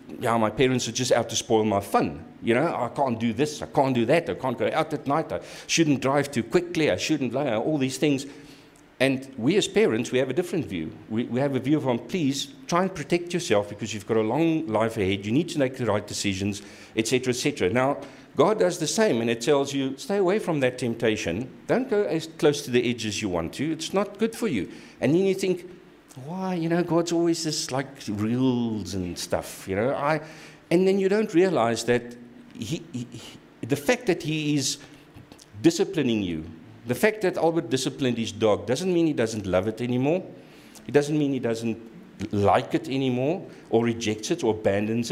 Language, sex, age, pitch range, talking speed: English, male, 50-69, 110-160 Hz, 215 wpm